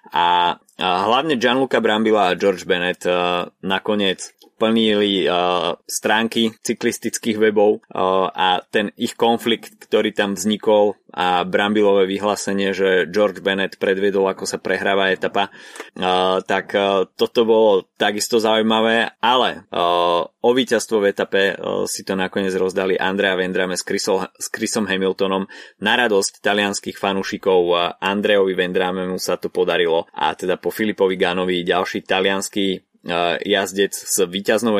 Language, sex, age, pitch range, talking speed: Slovak, male, 20-39, 95-105 Hz, 135 wpm